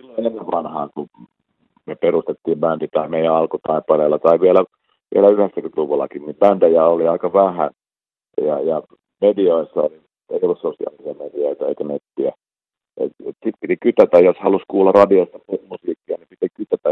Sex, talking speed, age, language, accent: male, 145 wpm, 50-69, Finnish, native